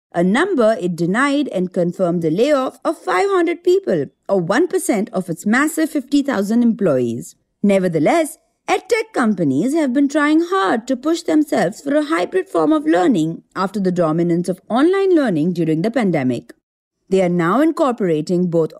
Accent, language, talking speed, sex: Indian, English, 155 wpm, female